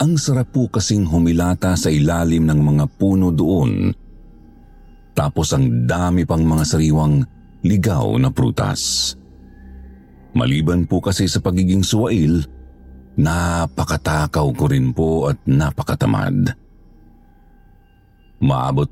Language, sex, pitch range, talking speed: Filipino, male, 75-100 Hz, 105 wpm